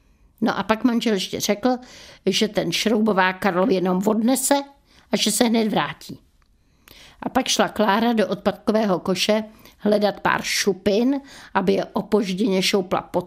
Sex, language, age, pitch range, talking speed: female, Czech, 60-79, 195-230 Hz, 145 wpm